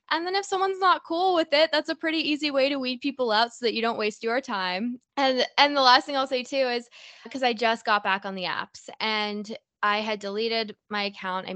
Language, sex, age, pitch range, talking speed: English, female, 20-39, 195-275 Hz, 250 wpm